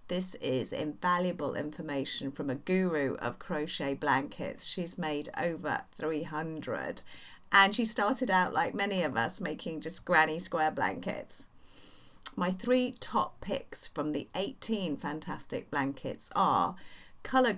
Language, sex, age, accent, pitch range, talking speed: English, female, 40-59, British, 145-185 Hz, 130 wpm